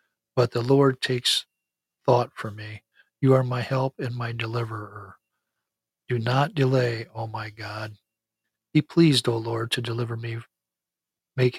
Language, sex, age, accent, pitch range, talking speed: English, male, 50-69, American, 110-125 Hz, 145 wpm